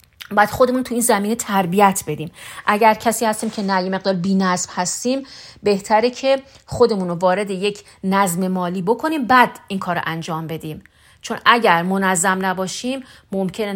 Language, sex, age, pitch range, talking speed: Persian, female, 40-59, 180-225 Hz, 150 wpm